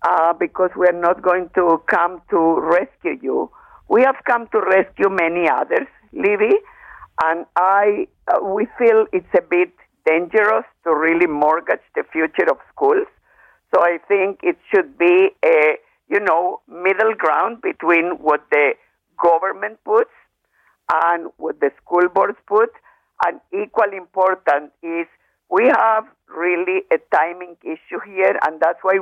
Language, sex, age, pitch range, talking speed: English, female, 50-69, 165-270 Hz, 145 wpm